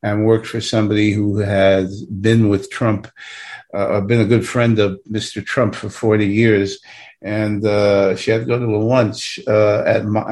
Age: 50-69